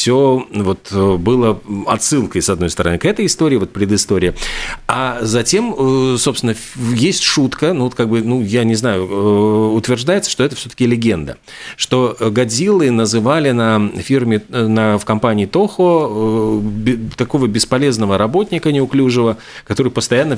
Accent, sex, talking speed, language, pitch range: native, male, 135 wpm, Russian, 105-130 Hz